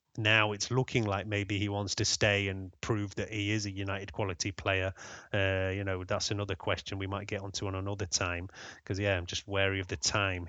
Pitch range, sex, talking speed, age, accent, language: 105-120 Hz, male, 225 wpm, 30-49, British, English